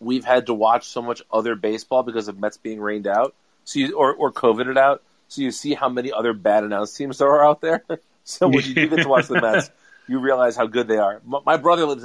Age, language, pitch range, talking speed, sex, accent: 30-49, English, 115-160 Hz, 250 wpm, male, American